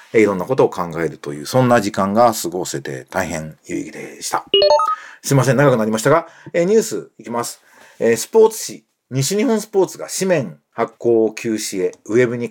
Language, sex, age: Japanese, male, 40-59